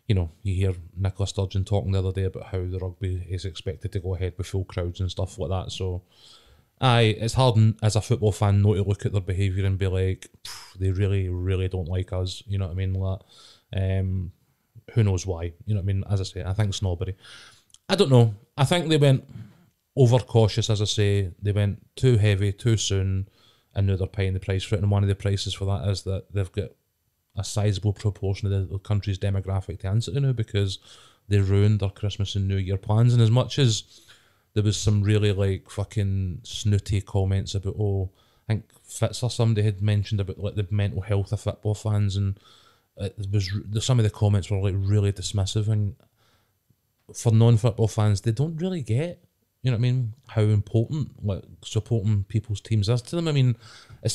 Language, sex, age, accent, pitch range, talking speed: English, male, 20-39, British, 95-115 Hz, 215 wpm